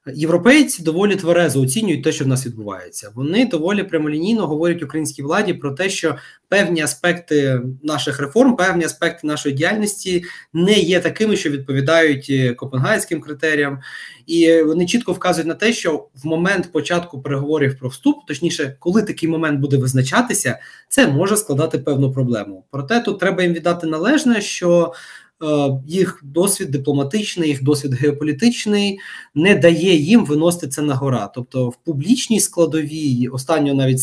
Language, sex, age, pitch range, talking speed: Ukrainian, male, 20-39, 145-185 Hz, 145 wpm